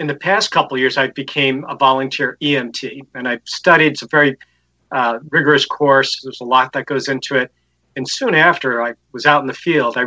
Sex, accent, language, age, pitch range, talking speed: male, American, English, 40-59, 125-150 Hz, 220 wpm